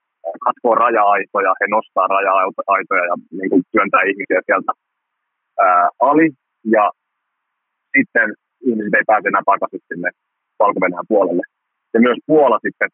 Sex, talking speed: male, 125 wpm